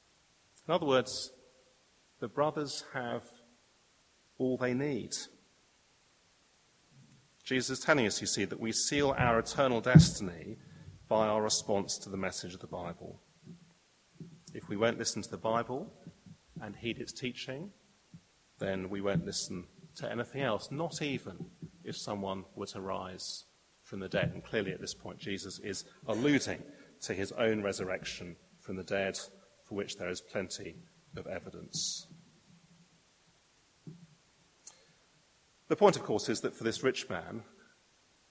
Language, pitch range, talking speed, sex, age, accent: English, 105-140 Hz, 140 wpm, male, 40-59, British